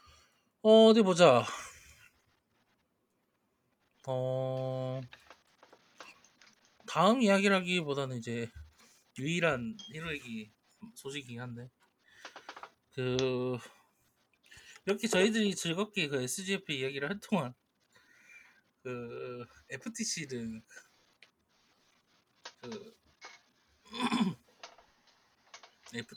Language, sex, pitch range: Korean, male, 120-195 Hz